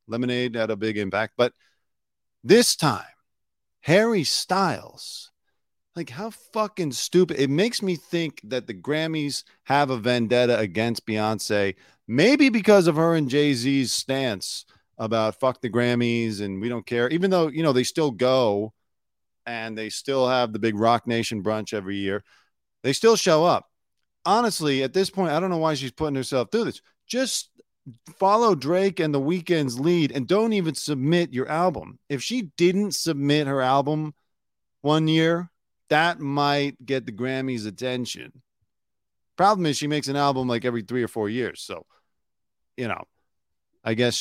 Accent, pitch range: American, 120-165 Hz